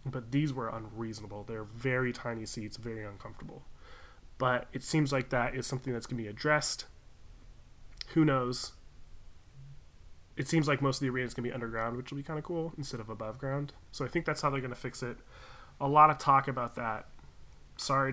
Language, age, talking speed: English, 20-39, 210 wpm